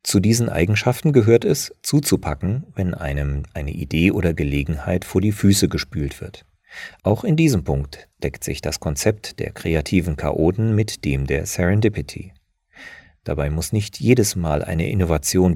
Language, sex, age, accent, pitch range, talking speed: German, male, 40-59, German, 80-110 Hz, 150 wpm